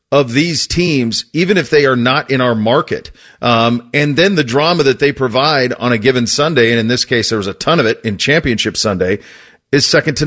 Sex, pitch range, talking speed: male, 115-145 Hz, 230 wpm